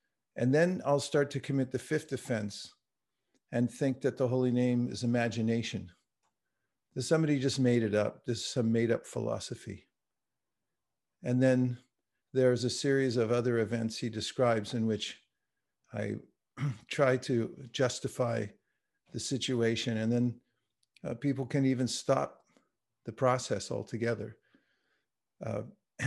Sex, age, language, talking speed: male, 50-69, English, 135 wpm